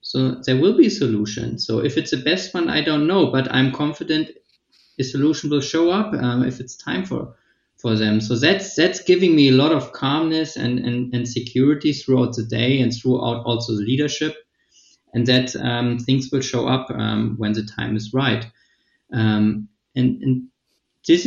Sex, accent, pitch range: male, German, 105-130 Hz